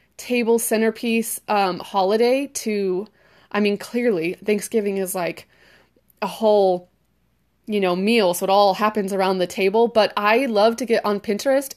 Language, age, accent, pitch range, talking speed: English, 20-39, American, 200-240 Hz, 155 wpm